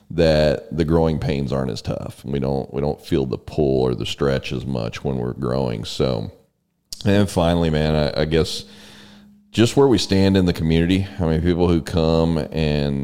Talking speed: 195 wpm